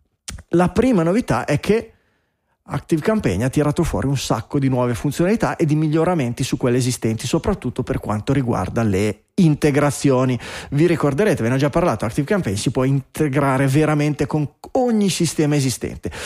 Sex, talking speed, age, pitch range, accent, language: male, 160 wpm, 30-49, 115-165 Hz, native, Italian